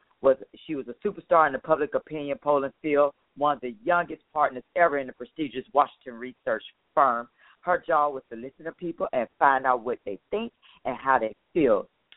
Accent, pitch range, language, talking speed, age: American, 125-170 Hz, English, 195 wpm, 40-59